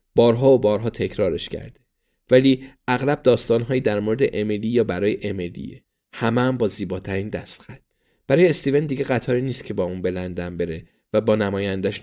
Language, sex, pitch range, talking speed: Persian, male, 105-130 Hz, 155 wpm